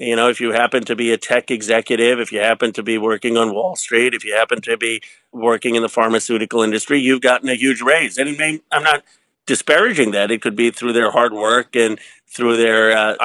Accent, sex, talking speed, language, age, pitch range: American, male, 225 wpm, English, 50-69, 115-135 Hz